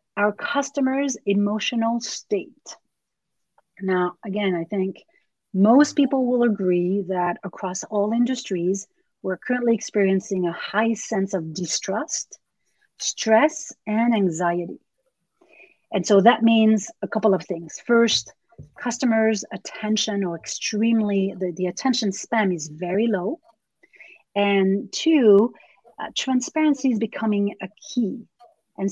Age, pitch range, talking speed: 40-59, 185-240 Hz, 115 wpm